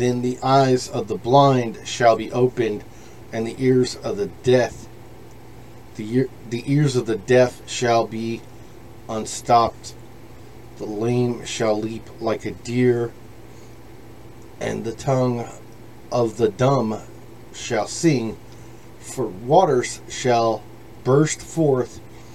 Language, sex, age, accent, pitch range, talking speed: English, male, 40-59, American, 115-125 Hz, 120 wpm